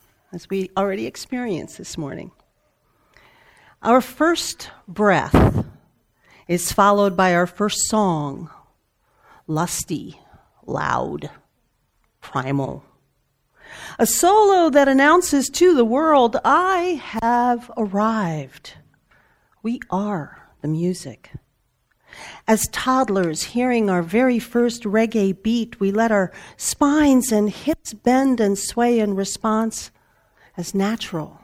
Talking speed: 100 wpm